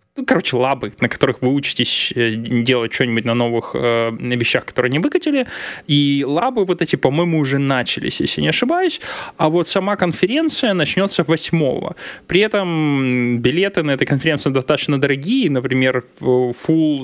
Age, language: 20-39, Russian